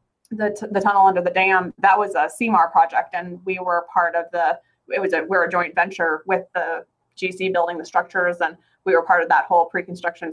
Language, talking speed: English, 220 wpm